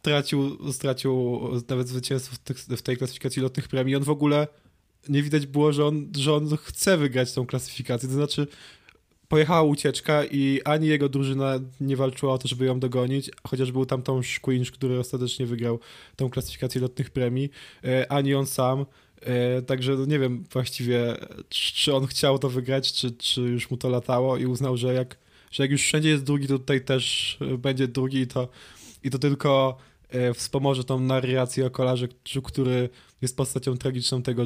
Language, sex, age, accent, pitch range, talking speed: Polish, male, 20-39, native, 125-140 Hz, 170 wpm